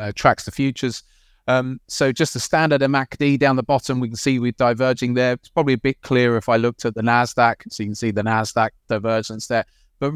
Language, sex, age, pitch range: English, male, 30-49, 120-150 Hz